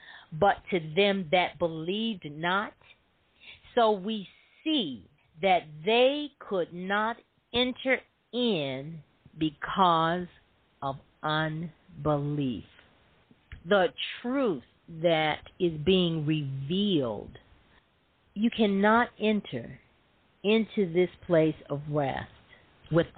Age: 50-69